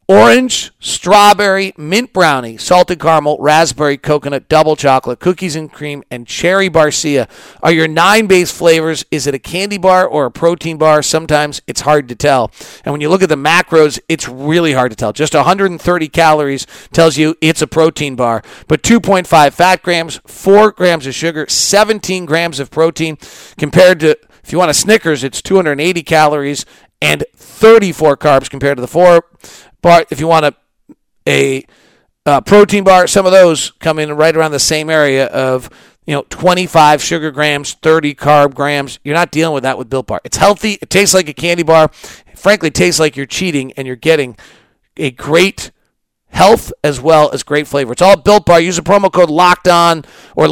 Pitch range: 145-180 Hz